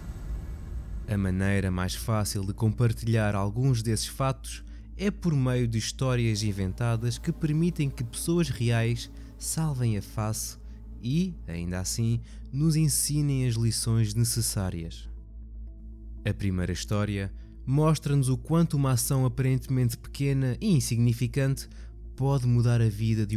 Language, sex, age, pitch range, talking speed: Portuguese, male, 20-39, 100-135 Hz, 125 wpm